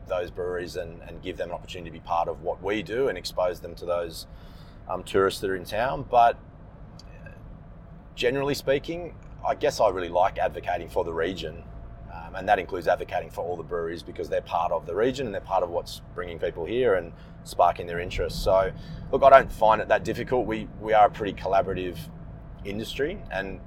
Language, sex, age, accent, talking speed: English, male, 30-49, Australian, 205 wpm